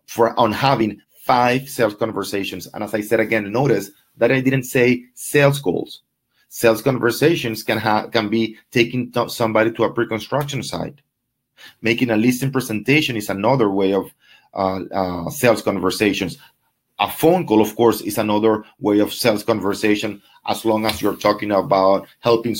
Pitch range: 105-130 Hz